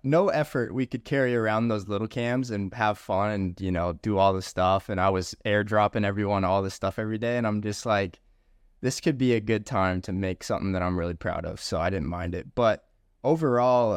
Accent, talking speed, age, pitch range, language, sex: American, 230 wpm, 20-39, 100-130 Hz, English, male